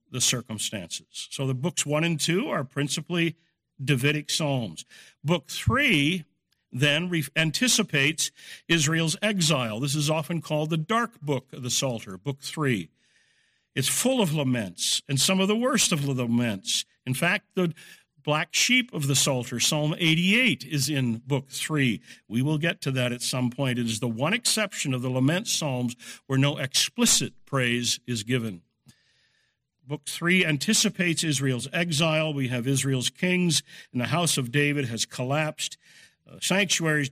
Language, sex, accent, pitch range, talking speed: English, male, American, 130-165 Hz, 155 wpm